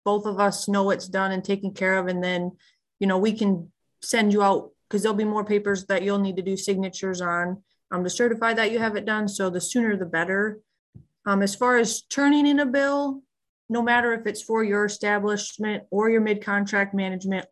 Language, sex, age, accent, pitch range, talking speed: English, female, 30-49, American, 195-230 Hz, 215 wpm